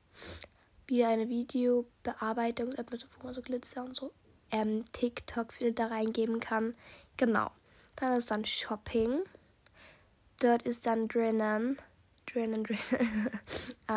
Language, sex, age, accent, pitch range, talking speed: German, female, 10-29, German, 215-240 Hz, 105 wpm